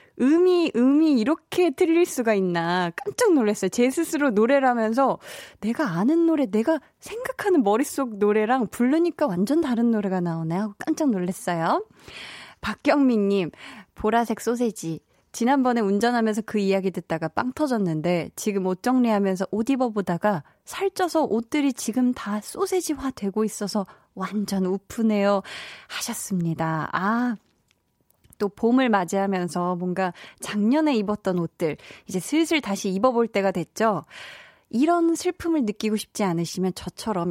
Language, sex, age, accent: Korean, female, 20-39, native